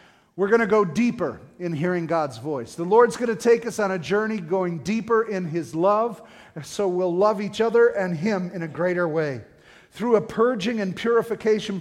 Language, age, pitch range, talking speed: English, 40-59, 170-215 Hz, 200 wpm